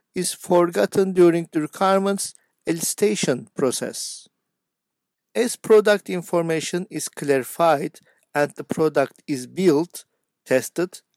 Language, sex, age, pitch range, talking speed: Turkish, male, 50-69, 150-205 Hz, 95 wpm